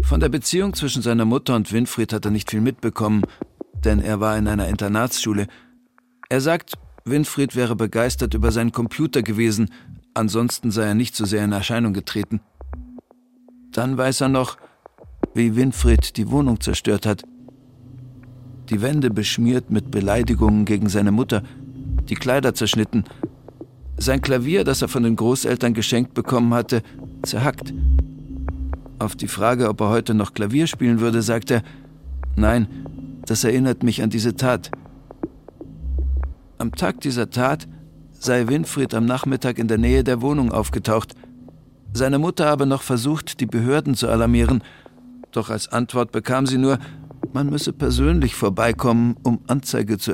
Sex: male